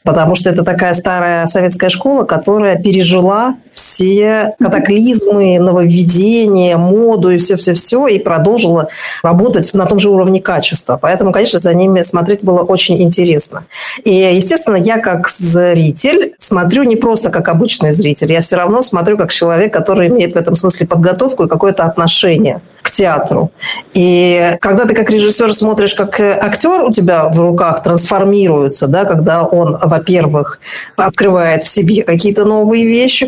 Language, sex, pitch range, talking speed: Russian, female, 175-215 Hz, 150 wpm